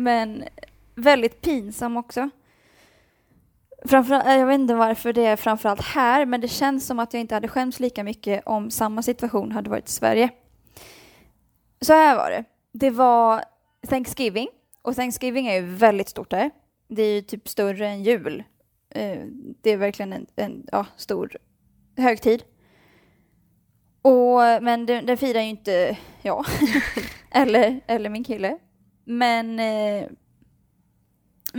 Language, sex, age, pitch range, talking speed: English, female, 20-39, 225-275 Hz, 135 wpm